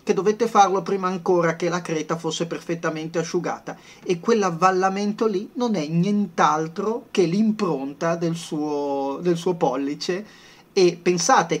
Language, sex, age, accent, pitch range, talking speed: Italian, male, 30-49, native, 140-185 Hz, 135 wpm